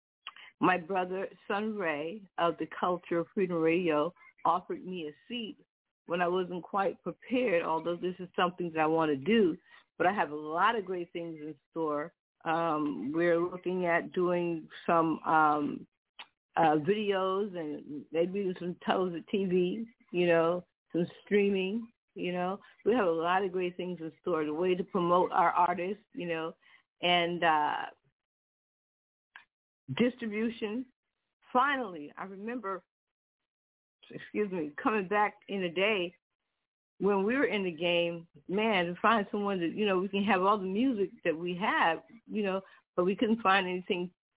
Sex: female